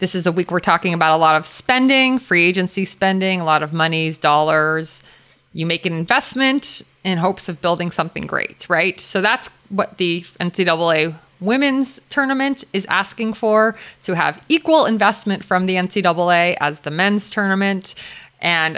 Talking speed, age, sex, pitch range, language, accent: 165 wpm, 30-49, female, 160-195 Hz, English, American